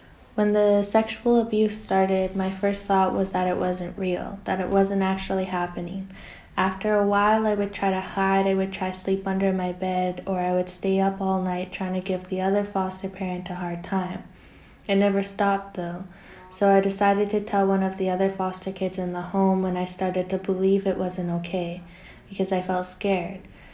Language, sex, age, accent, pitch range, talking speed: English, female, 10-29, American, 180-195 Hz, 205 wpm